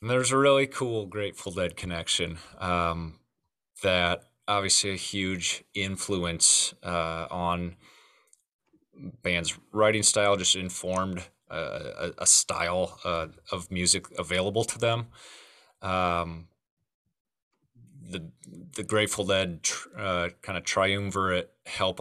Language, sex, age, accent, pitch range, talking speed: English, male, 30-49, American, 85-100 Hz, 115 wpm